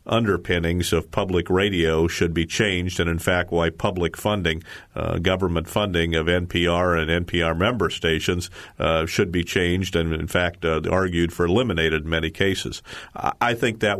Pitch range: 85-95 Hz